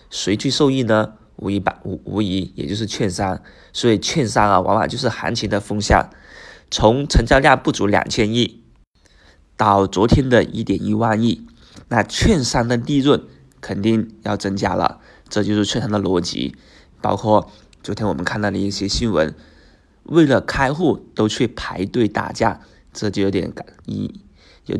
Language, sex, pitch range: Chinese, male, 100-120 Hz